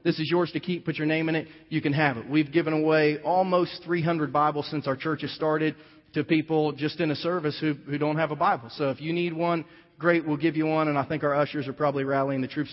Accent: American